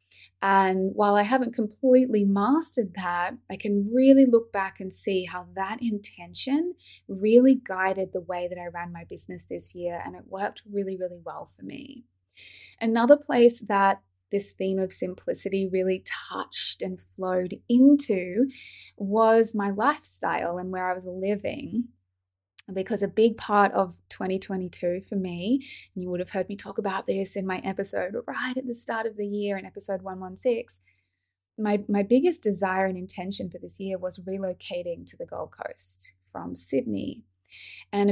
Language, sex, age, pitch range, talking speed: English, female, 20-39, 180-220 Hz, 165 wpm